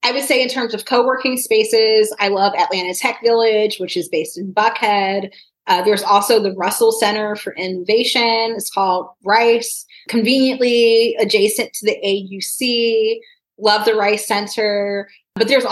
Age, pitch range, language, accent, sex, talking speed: 30-49, 190-230 Hz, English, American, female, 155 wpm